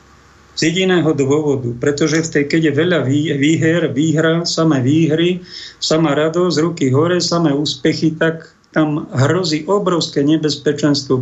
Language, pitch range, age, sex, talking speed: Slovak, 140-160 Hz, 50-69, male, 135 wpm